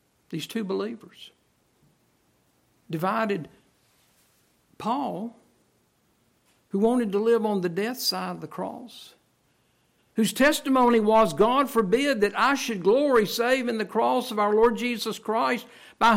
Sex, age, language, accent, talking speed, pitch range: male, 60-79, English, American, 130 wpm, 175-235 Hz